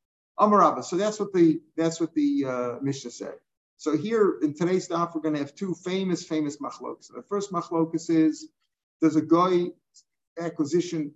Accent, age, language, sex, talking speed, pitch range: American, 50-69, English, male, 175 wpm, 150-180 Hz